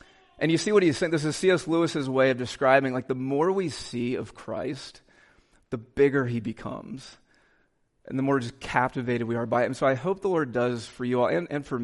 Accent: American